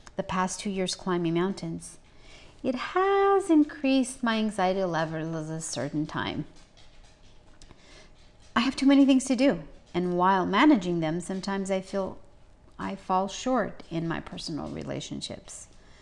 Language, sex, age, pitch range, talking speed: English, female, 30-49, 165-215 Hz, 135 wpm